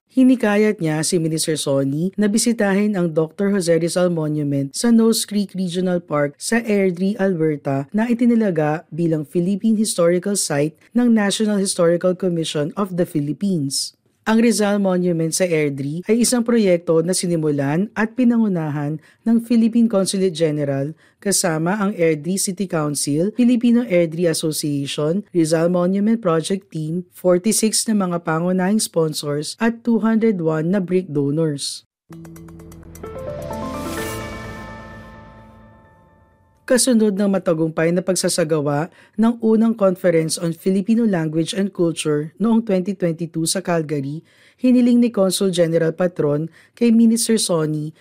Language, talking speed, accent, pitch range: Filipino, 120 wpm, native, 155-205 Hz